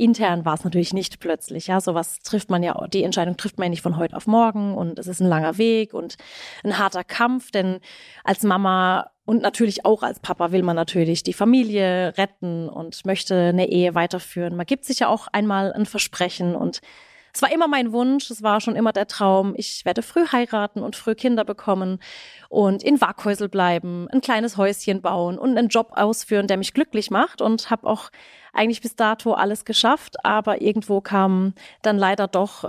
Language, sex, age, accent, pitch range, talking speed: German, female, 30-49, German, 180-225 Hz, 200 wpm